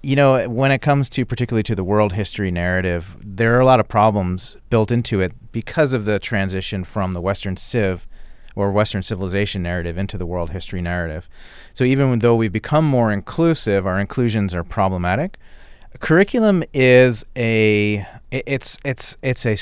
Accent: American